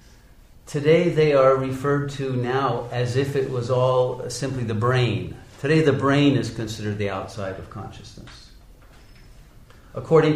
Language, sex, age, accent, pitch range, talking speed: English, male, 50-69, American, 100-135 Hz, 140 wpm